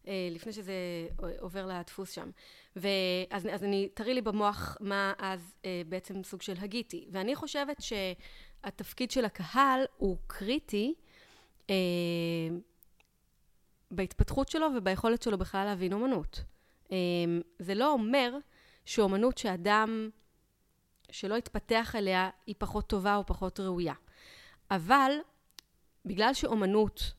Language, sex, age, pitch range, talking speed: Hebrew, female, 30-49, 185-230 Hz, 115 wpm